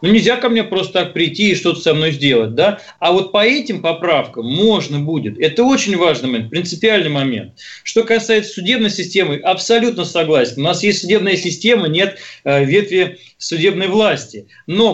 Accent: native